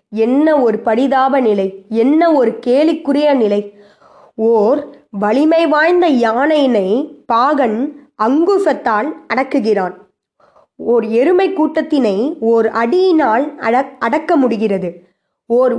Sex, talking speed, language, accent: female, 90 wpm, Tamil, native